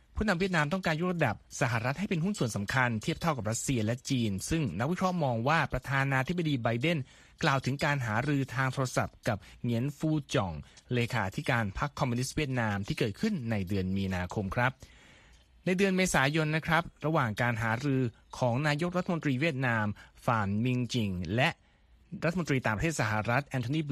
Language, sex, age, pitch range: Thai, male, 20-39, 115-155 Hz